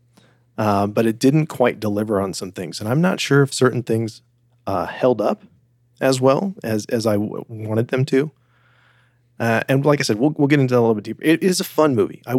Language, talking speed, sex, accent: English, 235 wpm, male, American